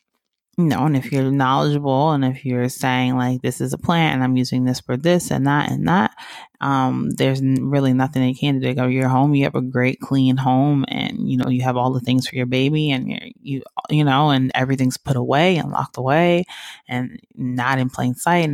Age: 20-39